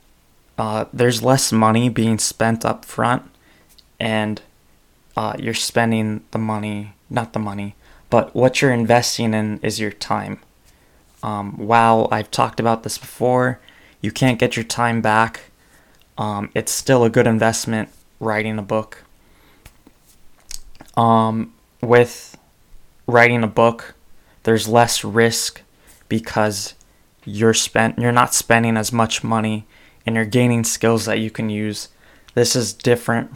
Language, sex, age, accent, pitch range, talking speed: English, male, 20-39, American, 110-115 Hz, 130 wpm